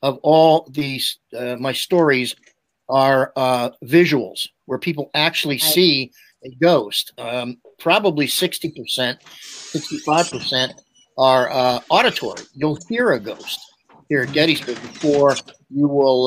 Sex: male